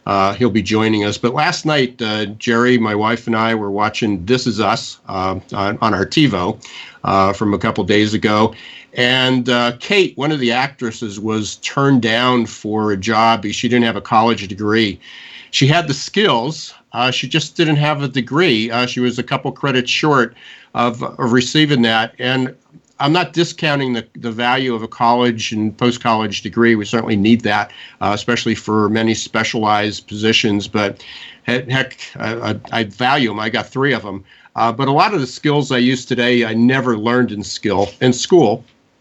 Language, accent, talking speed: English, American, 190 wpm